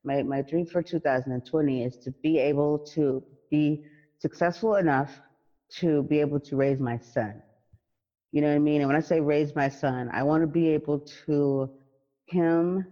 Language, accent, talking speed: English, American, 180 wpm